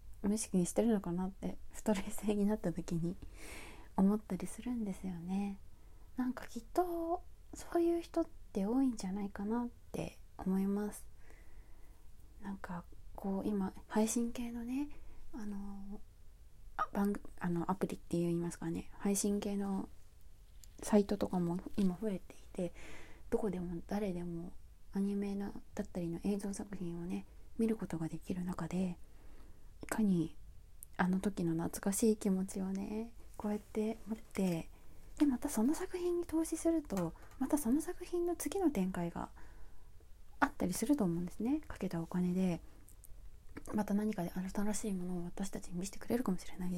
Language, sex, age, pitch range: Japanese, female, 20-39, 180-225 Hz